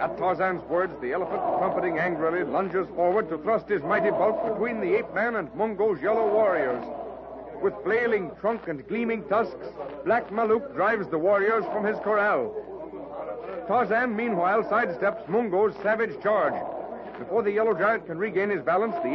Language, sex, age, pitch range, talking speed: English, male, 60-79, 190-245 Hz, 155 wpm